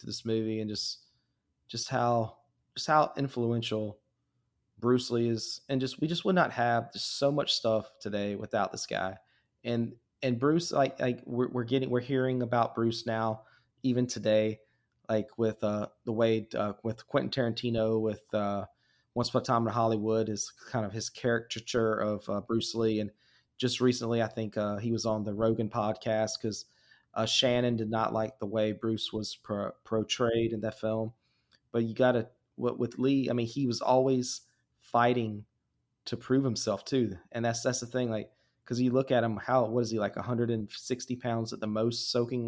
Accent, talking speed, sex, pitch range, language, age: American, 195 wpm, male, 110-125 Hz, English, 30-49